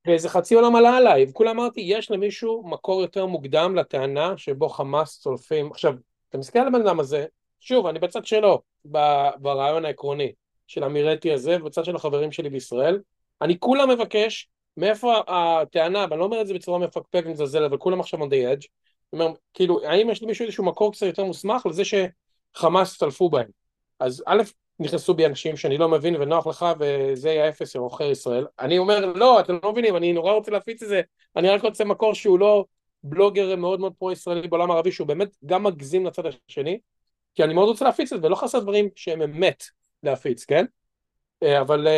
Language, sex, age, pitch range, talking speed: Hebrew, male, 30-49, 160-220 Hz, 185 wpm